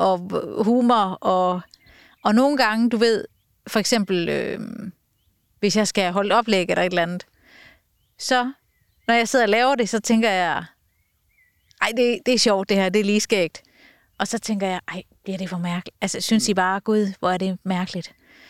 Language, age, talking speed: Danish, 30-49, 190 wpm